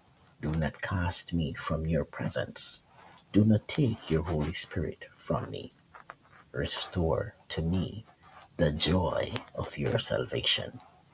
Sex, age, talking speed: male, 50-69, 125 wpm